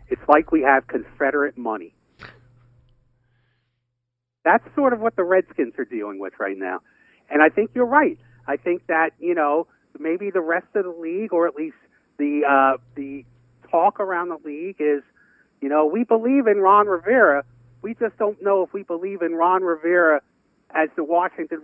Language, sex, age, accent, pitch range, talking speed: English, male, 50-69, American, 140-205 Hz, 175 wpm